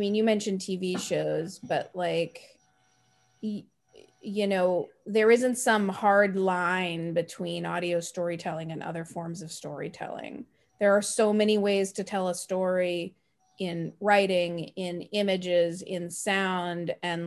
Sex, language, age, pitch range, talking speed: female, English, 30-49, 170-205 Hz, 130 wpm